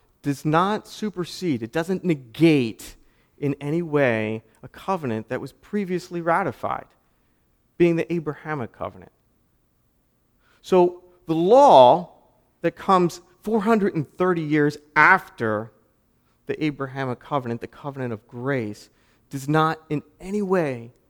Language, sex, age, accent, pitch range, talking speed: English, male, 40-59, American, 120-165 Hz, 110 wpm